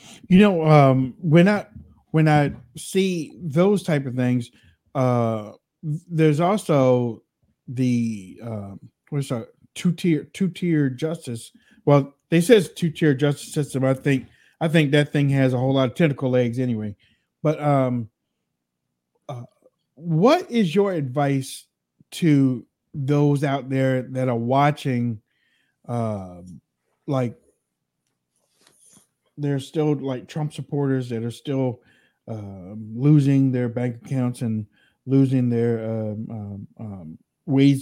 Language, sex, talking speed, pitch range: English, male, 125 wpm, 120-155 Hz